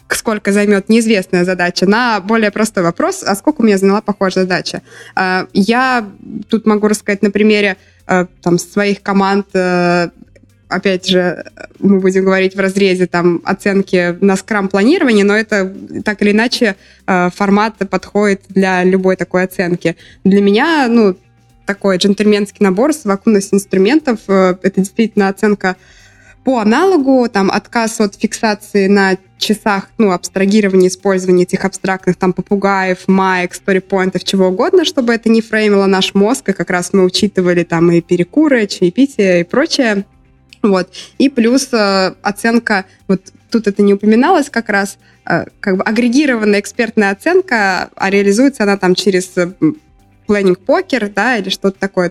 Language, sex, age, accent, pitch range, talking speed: Russian, female, 20-39, native, 185-220 Hz, 140 wpm